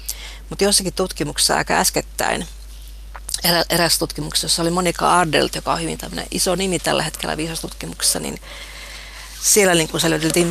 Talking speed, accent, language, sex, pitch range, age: 130 wpm, native, Finnish, female, 150-175 Hz, 40-59